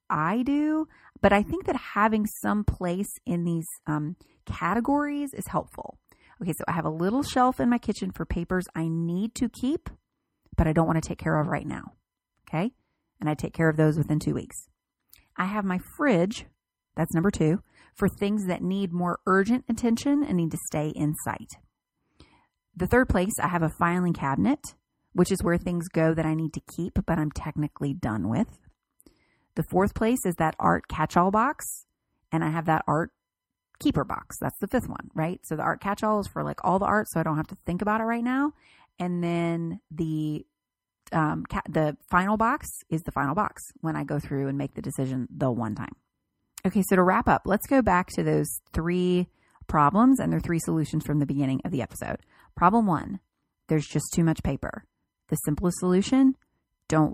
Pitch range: 155-205 Hz